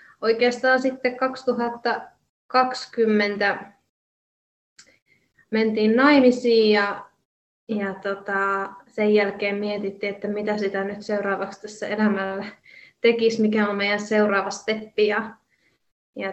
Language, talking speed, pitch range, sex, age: Finnish, 95 wpm, 200-225 Hz, female, 20-39